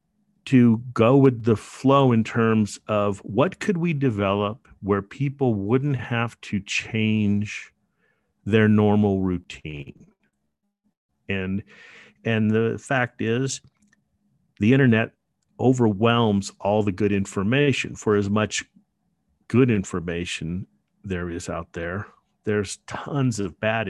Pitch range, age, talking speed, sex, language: 95-125 Hz, 40-59, 115 wpm, male, English